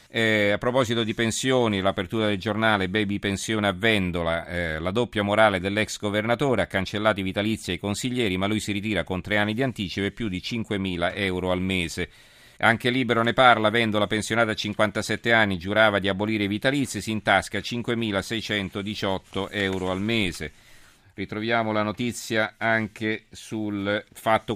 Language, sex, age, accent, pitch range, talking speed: Italian, male, 40-59, native, 90-110 Hz, 160 wpm